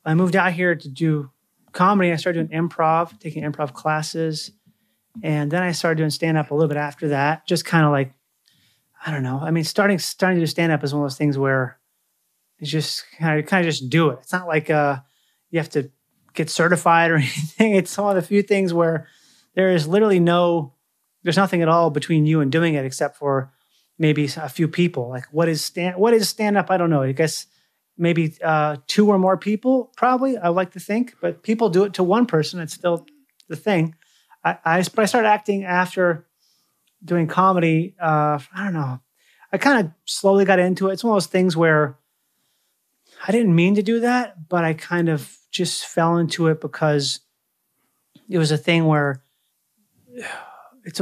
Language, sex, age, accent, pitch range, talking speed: English, male, 30-49, American, 150-185 Hz, 200 wpm